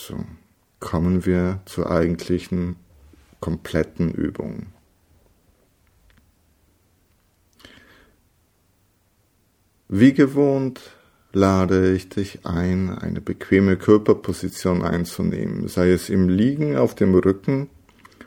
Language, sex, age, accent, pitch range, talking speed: German, male, 50-69, German, 90-105 Hz, 80 wpm